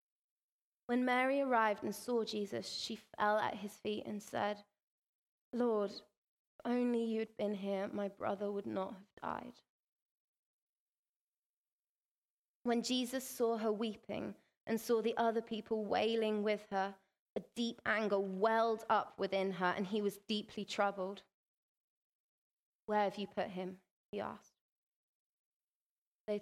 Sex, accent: female, British